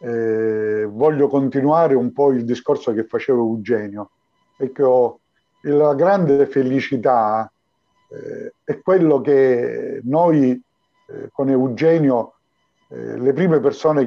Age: 50-69